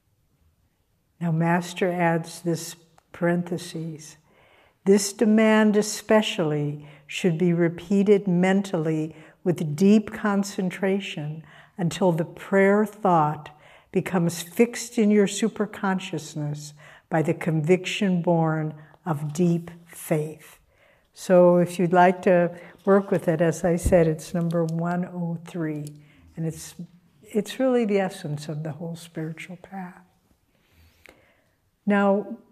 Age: 60-79